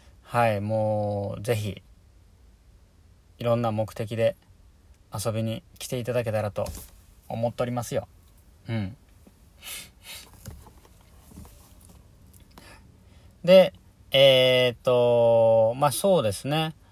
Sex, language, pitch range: male, Japanese, 90-120 Hz